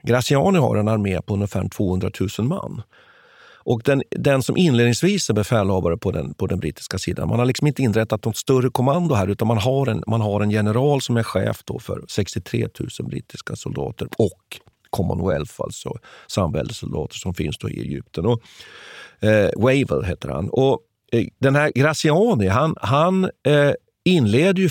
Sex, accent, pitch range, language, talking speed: male, native, 100-140 Hz, Swedish, 170 wpm